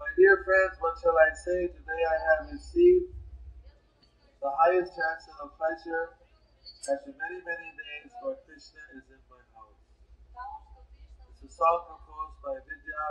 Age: 50-69